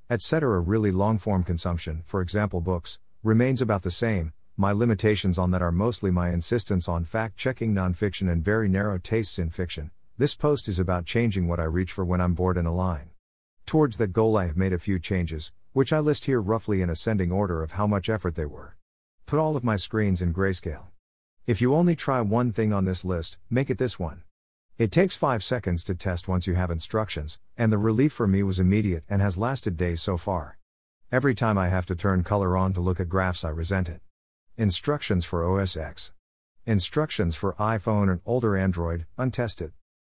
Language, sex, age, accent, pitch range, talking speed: English, male, 50-69, American, 85-110 Hz, 200 wpm